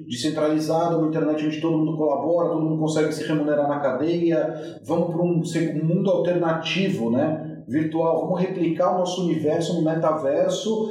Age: 40-59